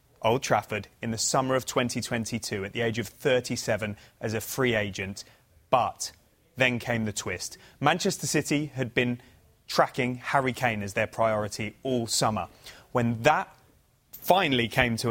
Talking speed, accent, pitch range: 150 wpm, British, 115-135 Hz